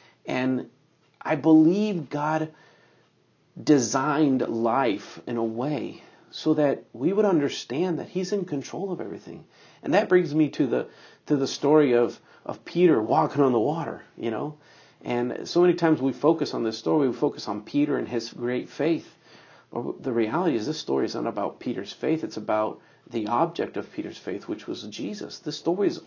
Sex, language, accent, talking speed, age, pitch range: male, English, American, 180 wpm, 50-69, 130-180 Hz